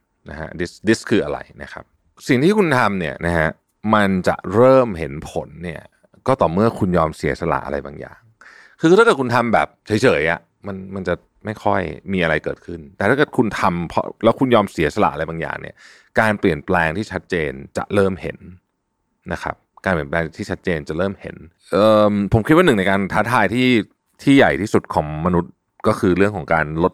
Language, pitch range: Thai, 85-105 Hz